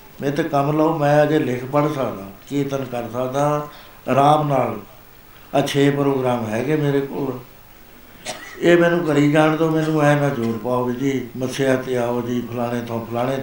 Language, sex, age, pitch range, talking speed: Punjabi, male, 60-79, 120-150 Hz, 165 wpm